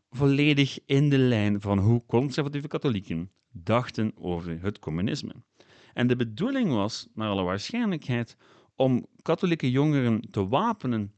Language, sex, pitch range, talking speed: Dutch, male, 100-135 Hz, 130 wpm